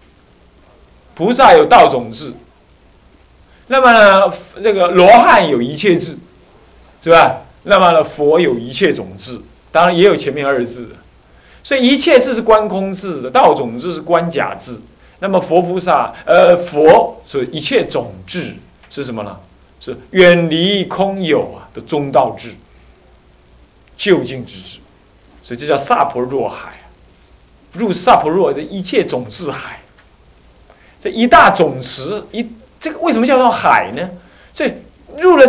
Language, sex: Chinese, male